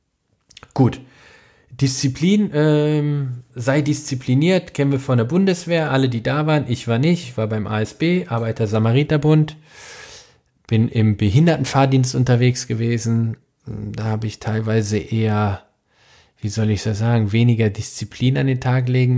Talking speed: 140 wpm